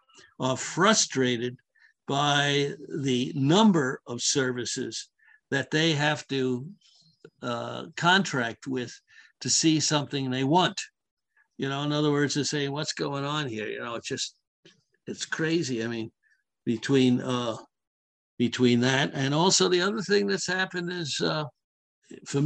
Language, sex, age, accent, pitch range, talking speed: English, male, 60-79, American, 125-155 Hz, 140 wpm